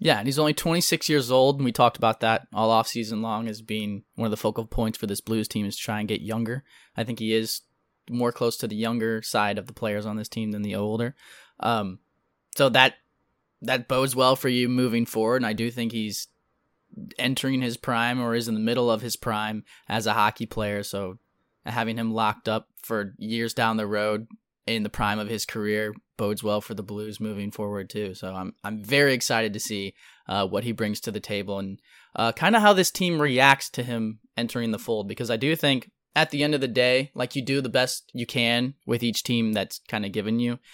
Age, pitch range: 10-29, 105-125 Hz